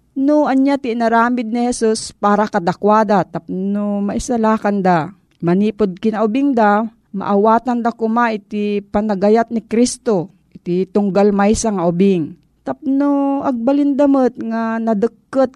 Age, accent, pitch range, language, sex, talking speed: 40-59, native, 185-230 Hz, Filipino, female, 110 wpm